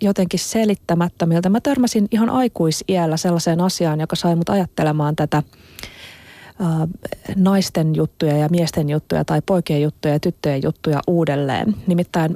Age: 30-49